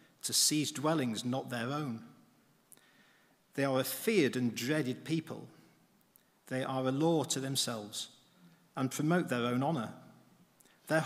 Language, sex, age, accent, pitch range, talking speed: English, male, 50-69, British, 125-165 Hz, 135 wpm